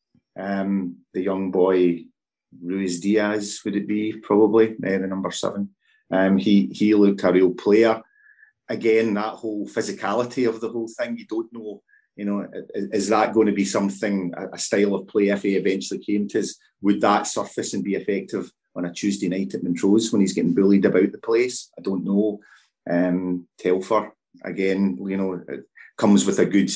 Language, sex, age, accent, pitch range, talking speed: English, male, 30-49, British, 90-105 Hz, 180 wpm